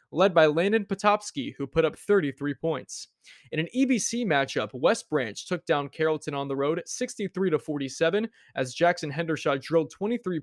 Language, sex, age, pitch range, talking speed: English, male, 20-39, 140-180 Hz, 155 wpm